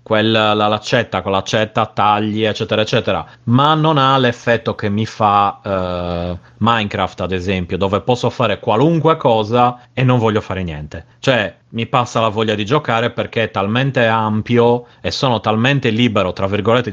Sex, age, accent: male, 30-49, native